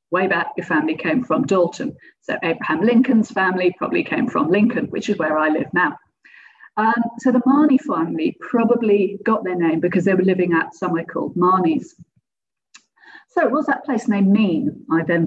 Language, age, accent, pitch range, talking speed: English, 50-69, British, 180-235 Hz, 180 wpm